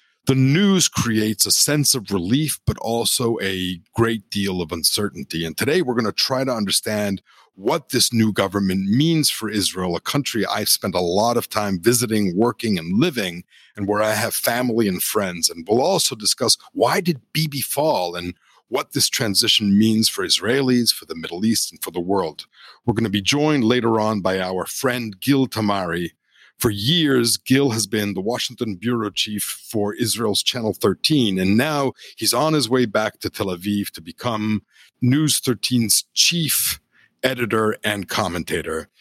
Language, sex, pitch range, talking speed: English, male, 100-130 Hz, 175 wpm